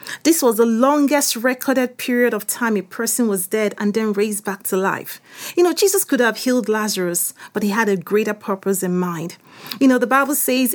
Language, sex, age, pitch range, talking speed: English, female, 40-59, 205-255 Hz, 210 wpm